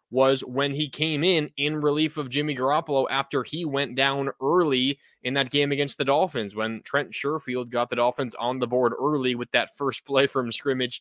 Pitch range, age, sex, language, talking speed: 130-145 Hz, 20-39, male, English, 200 wpm